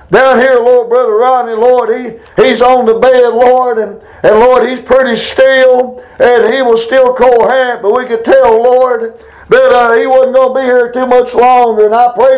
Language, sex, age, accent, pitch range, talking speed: English, male, 60-79, American, 230-265 Hz, 215 wpm